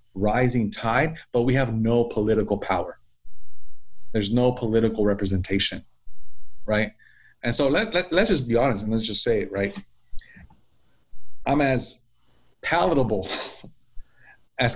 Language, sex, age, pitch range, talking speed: English, male, 30-49, 110-125 Hz, 125 wpm